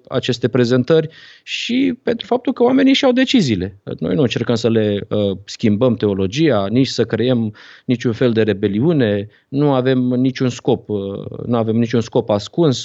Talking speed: 165 wpm